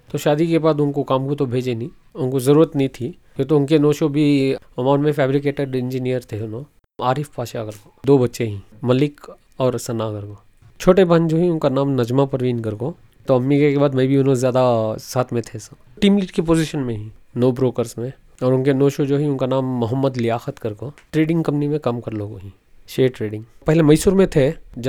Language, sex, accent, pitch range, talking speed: English, male, Indian, 120-150 Hz, 130 wpm